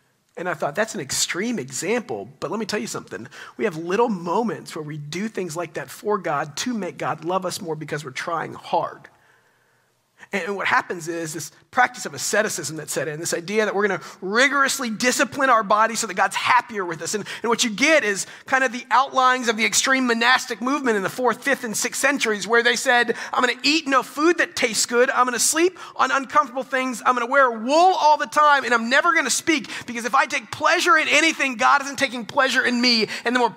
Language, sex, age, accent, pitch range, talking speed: English, male, 40-59, American, 155-250 Hz, 240 wpm